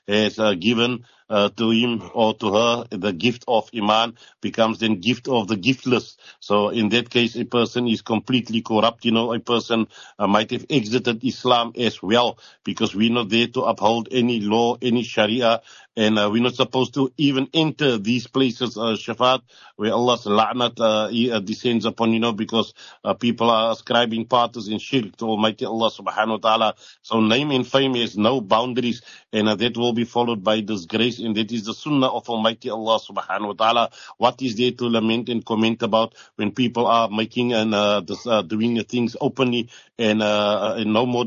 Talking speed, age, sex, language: 195 wpm, 60-79, male, English